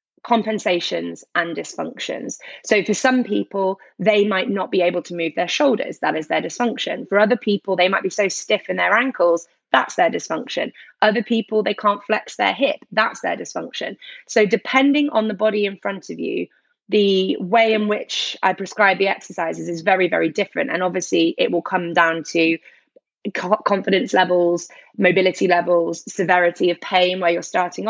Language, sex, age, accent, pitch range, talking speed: English, female, 20-39, British, 175-215 Hz, 175 wpm